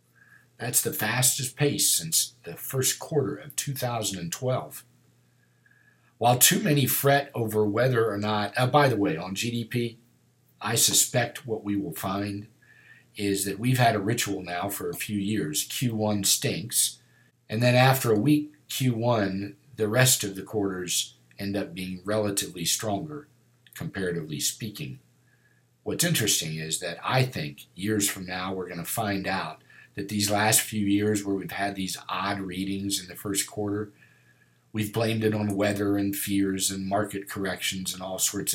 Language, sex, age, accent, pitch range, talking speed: English, male, 50-69, American, 100-120 Hz, 160 wpm